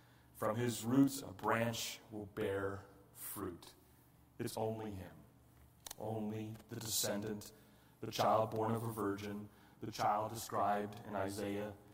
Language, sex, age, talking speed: English, male, 30-49, 125 wpm